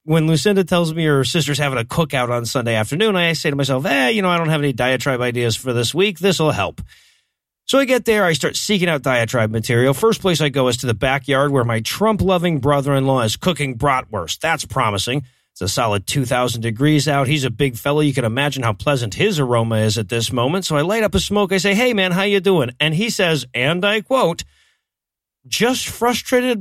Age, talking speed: 30-49, 225 wpm